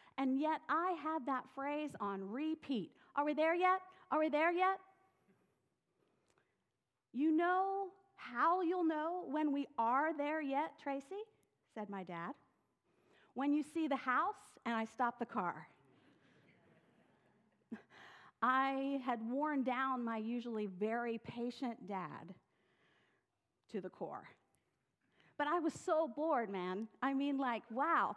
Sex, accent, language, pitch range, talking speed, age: female, American, English, 230-315 Hz, 130 wpm, 50-69